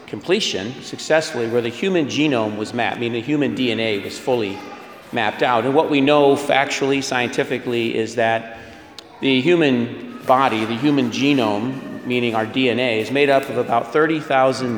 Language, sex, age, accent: English, male, 40-59, American